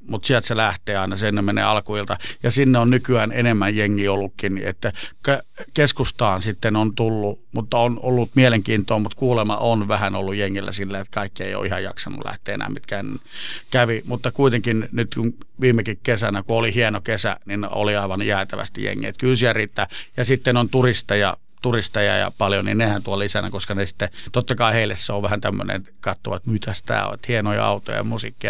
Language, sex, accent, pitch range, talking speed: Finnish, male, native, 100-120 Hz, 185 wpm